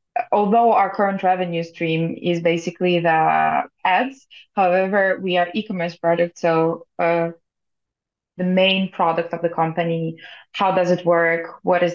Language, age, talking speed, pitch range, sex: English, 20-39, 140 wpm, 170-200 Hz, female